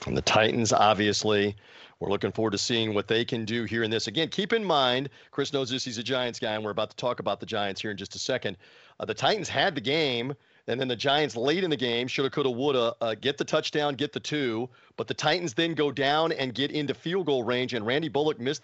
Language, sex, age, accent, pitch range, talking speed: English, male, 40-59, American, 115-145 Hz, 260 wpm